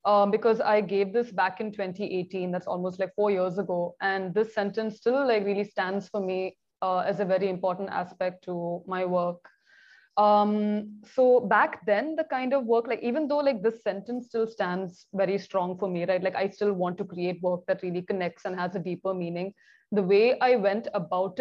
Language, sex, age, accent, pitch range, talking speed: English, female, 20-39, Indian, 185-225 Hz, 205 wpm